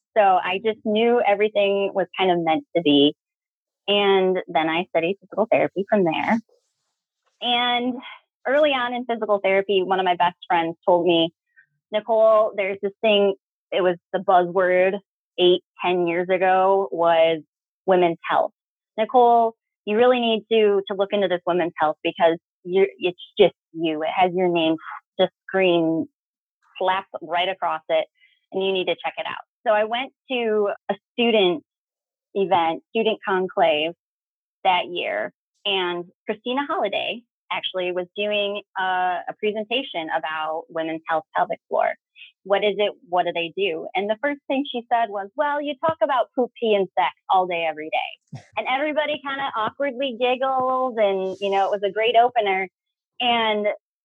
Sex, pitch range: female, 180-235 Hz